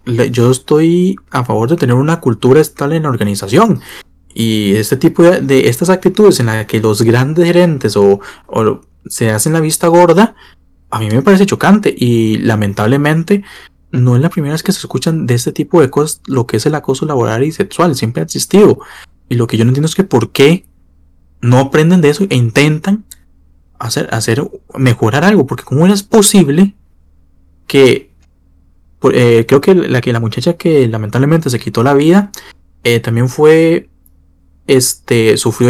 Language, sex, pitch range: Spanish, male, 110-165 Hz